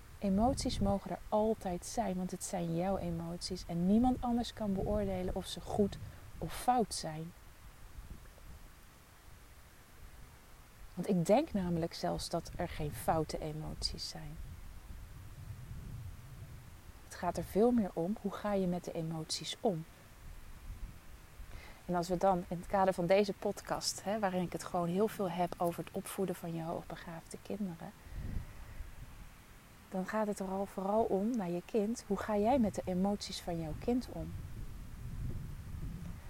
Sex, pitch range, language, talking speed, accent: female, 155-205 Hz, Dutch, 145 wpm, Dutch